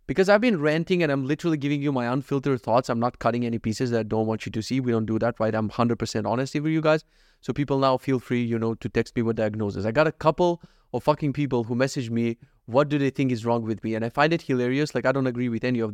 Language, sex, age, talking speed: English, male, 30-49, 290 wpm